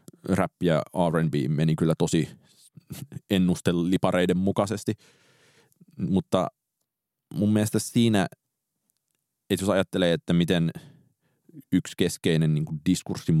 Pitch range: 80-95 Hz